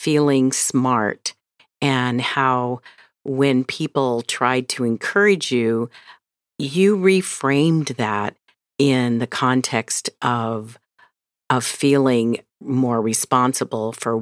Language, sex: English, female